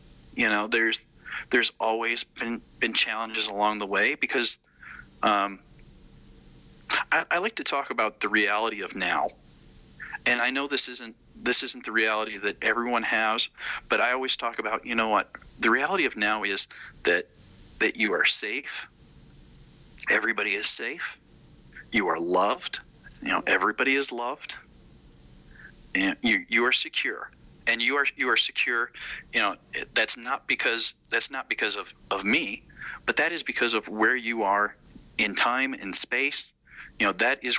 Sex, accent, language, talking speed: male, American, English, 165 wpm